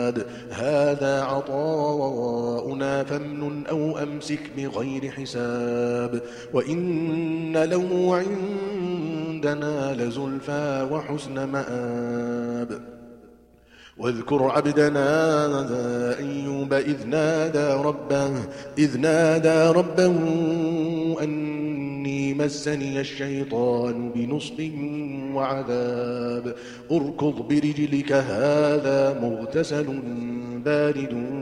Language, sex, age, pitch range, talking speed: Arabic, male, 40-59, 130-150 Hz, 65 wpm